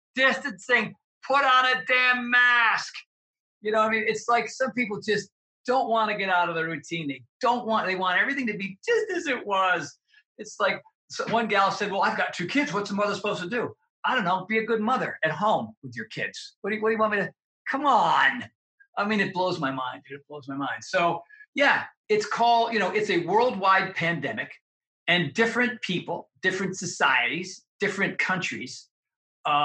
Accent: American